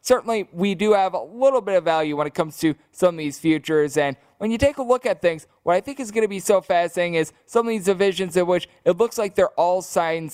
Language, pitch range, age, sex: English, 145-180 Hz, 20-39, male